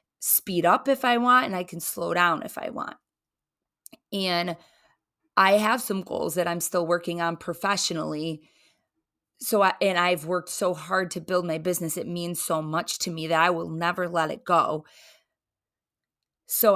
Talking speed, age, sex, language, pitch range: 175 wpm, 20-39, female, English, 170-205 Hz